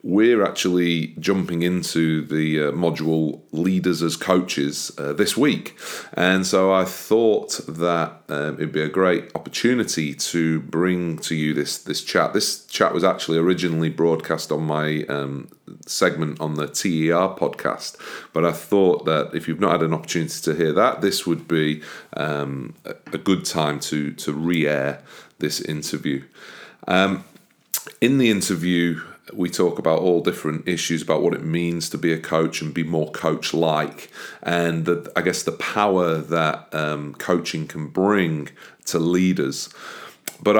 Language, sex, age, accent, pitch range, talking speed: English, male, 40-59, British, 75-85 Hz, 155 wpm